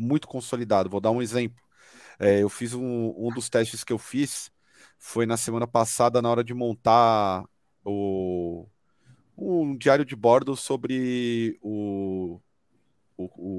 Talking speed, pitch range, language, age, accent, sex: 140 wpm, 110-140 Hz, Portuguese, 40-59, Brazilian, male